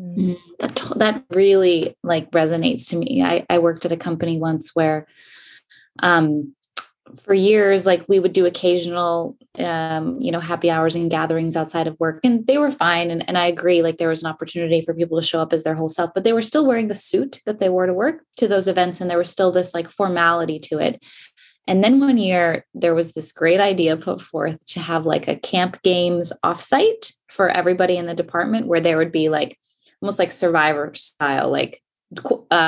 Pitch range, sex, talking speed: 165-200 Hz, female, 210 wpm